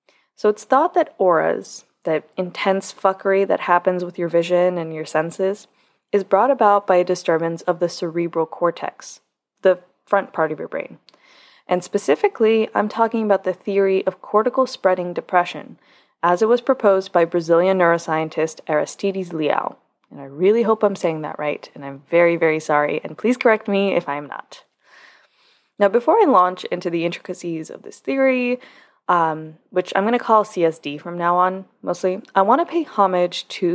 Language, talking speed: English, 175 wpm